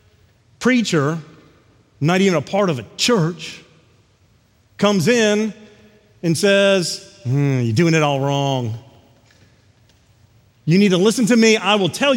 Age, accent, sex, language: 40-59, American, male, English